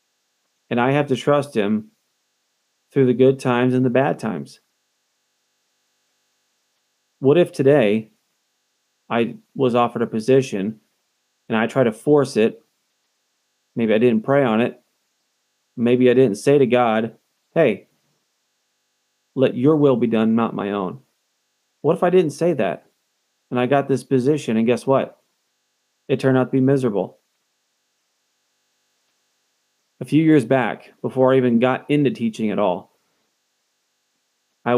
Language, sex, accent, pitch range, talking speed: English, male, American, 115-135 Hz, 140 wpm